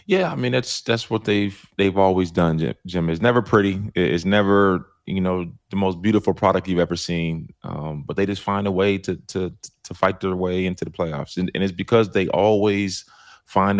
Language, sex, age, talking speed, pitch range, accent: English, male, 20-39, 210 wpm, 85-100 Hz, American